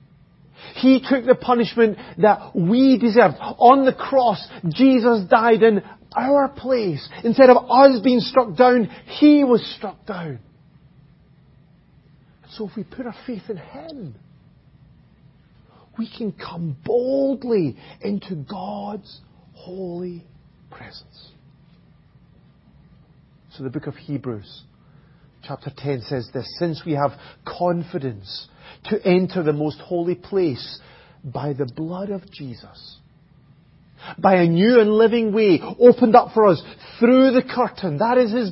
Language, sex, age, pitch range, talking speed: English, male, 40-59, 150-235 Hz, 125 wpm